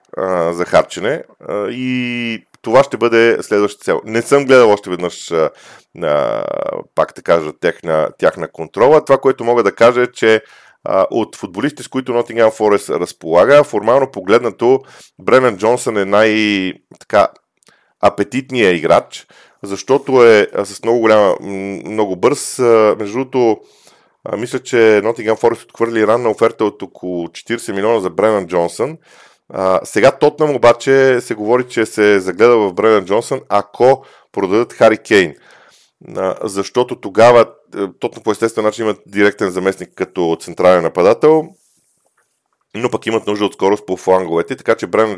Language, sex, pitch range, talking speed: Bulgarian, male, 95-120 Hz, 135 wpm